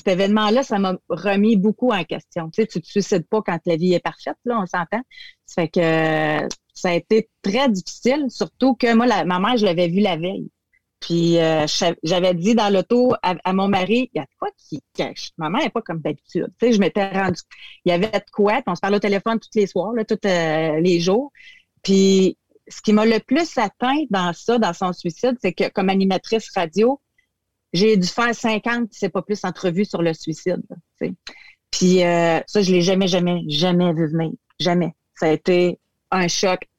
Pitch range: 175-215 Hz